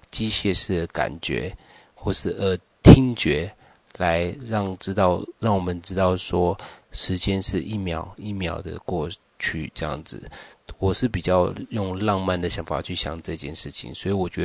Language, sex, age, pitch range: Chinese, male, 30-49, 85-95 Hz